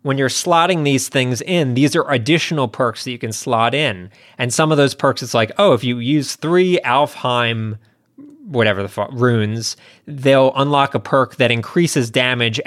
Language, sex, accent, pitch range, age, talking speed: English, male, American, 115-145 Hz, 30-49, 185 wpm